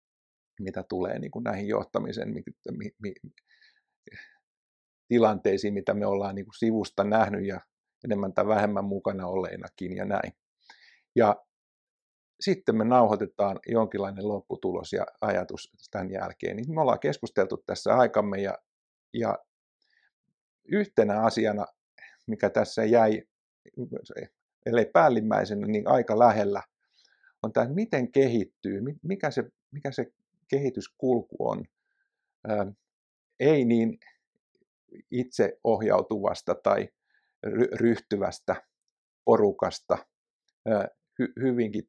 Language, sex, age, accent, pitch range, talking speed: Finnish, male, 50-69, native, 105-135 Hz, 100 wpm